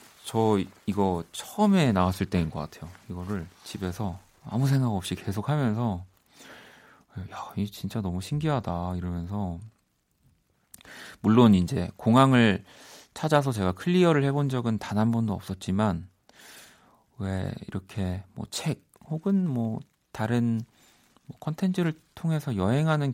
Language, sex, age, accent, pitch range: Korean, male, 40-59, native, 95-130 Hz